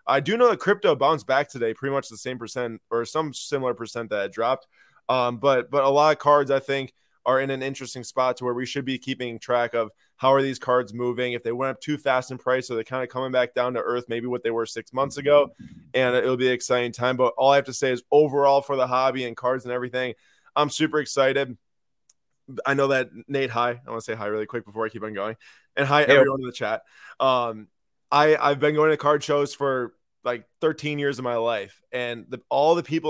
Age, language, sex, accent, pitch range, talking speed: 20-39, English, male, American, 120-140 Hz, 250 wpm